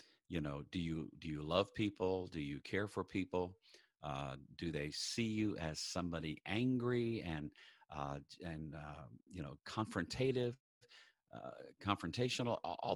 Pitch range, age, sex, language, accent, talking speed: 80-100 Hz, 50-69, male, English, American, 145 wpm